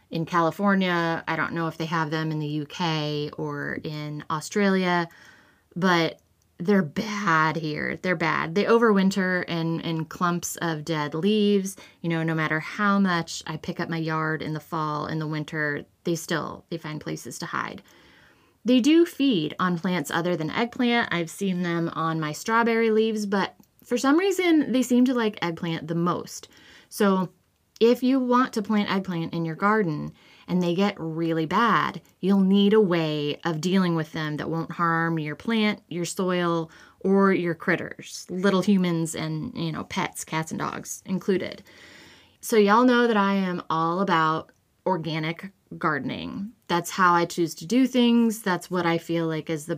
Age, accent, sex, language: 20-39, American, female, English